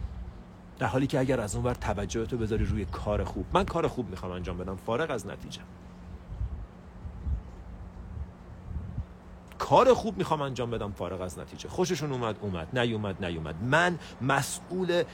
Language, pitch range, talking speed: Persian, 95-155 Hz, 145 wpm